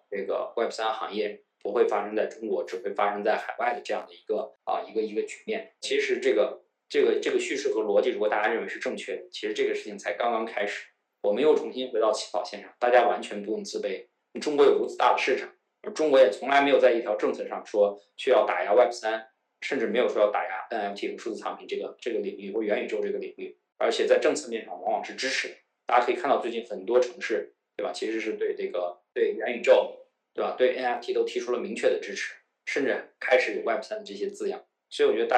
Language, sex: Chinese, male